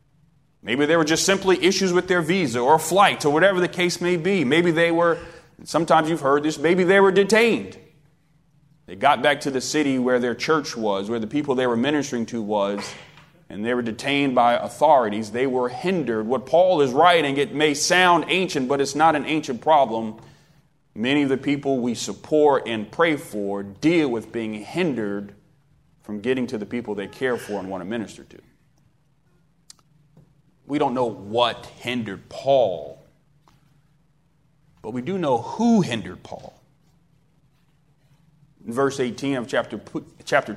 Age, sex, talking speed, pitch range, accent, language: 30-49, male, 170 wpm, 120-155 Hz, American, English